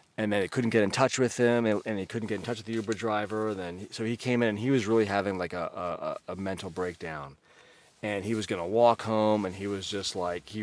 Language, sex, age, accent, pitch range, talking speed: English, male, 30-49, American, 95-115 Hz, 270 wpm